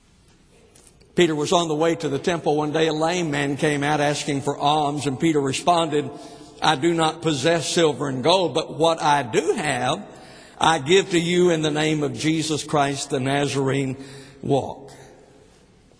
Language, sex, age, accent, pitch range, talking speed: English, male, 60-79, American, 145-175 Hz, 175 wpm